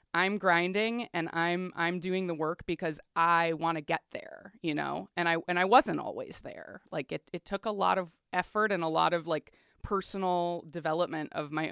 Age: 20-39